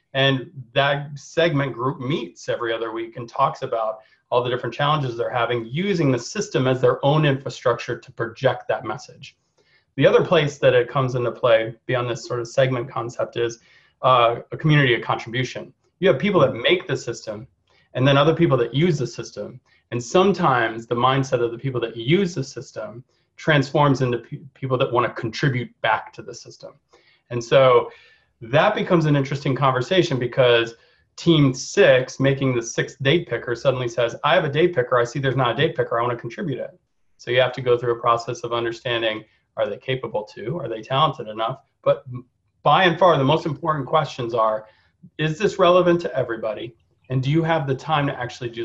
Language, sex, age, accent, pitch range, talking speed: English, male, 30-49, American, 120-155 Hz, 195 wpm